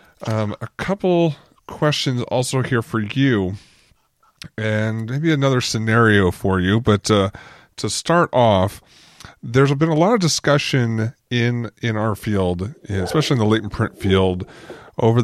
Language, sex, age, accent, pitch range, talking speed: English, male, 30-49, American, 100-130 Hz, 140 wpm